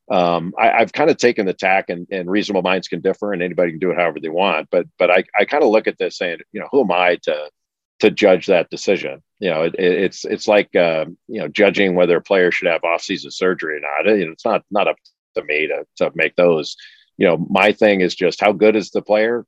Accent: American